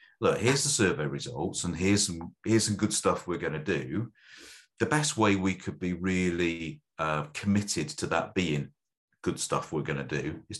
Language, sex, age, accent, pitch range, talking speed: English, male, 40-59, British, 75-105 Hz, 200 wpm